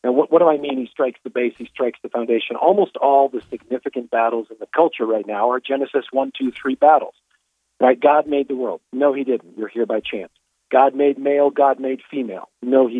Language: English